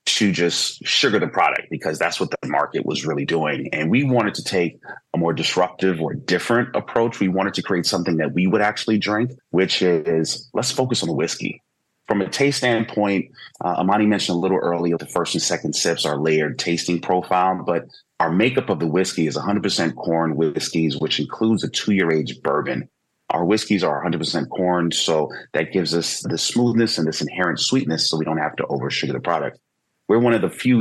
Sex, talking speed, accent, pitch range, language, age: male, 205 wpm, American, 80-100 Hz, English, 30-49